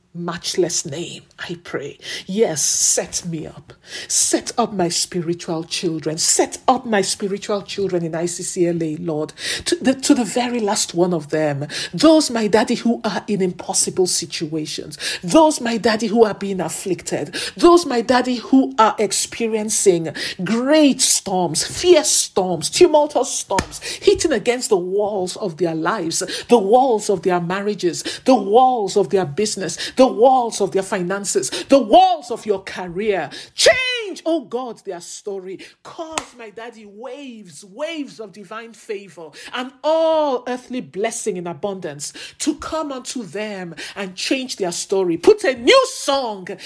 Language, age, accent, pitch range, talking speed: English, 50-69, Nigerian, 175-250 Hz, 145 wpm